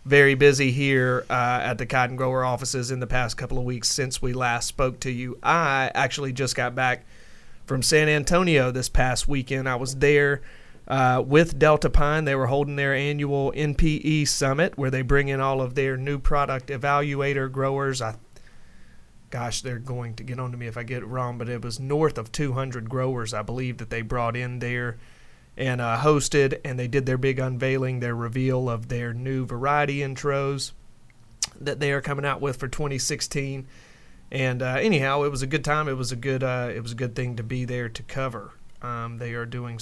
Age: 30-49